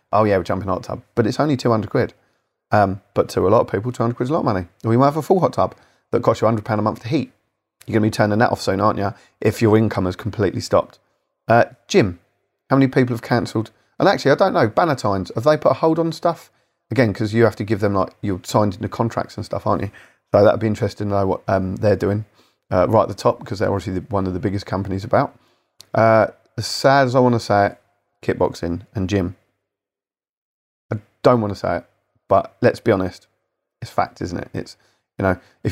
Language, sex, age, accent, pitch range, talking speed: English, male, 30-49, British, 100-125 Hz, 250 wpm